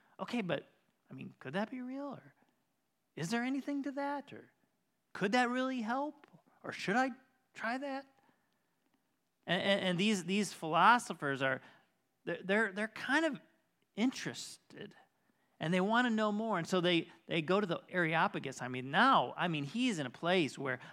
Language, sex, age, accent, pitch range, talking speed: English, male, 30-49, American, 155-225 Hz, 170 wpm